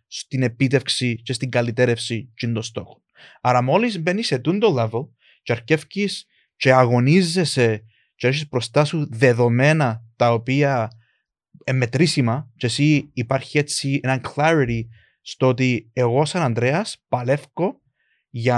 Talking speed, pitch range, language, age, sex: 125 wpm, 125-165 Hz, Greek, 20-39, male